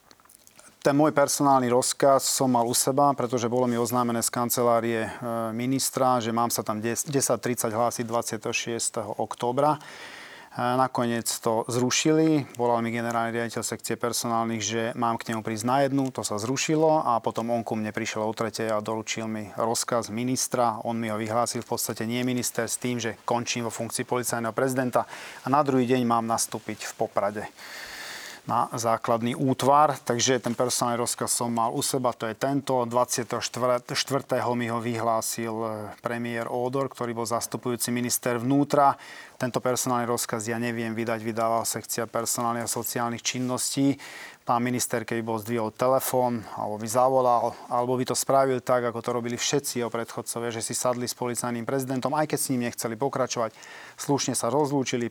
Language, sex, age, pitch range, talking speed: Slovak, male, 30-49, 115-130 Hz, 165 wpm